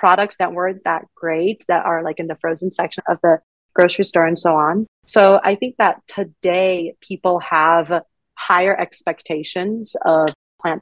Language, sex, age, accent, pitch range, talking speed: English, female, 30-49, American, 170-190 Hz, 165 wpm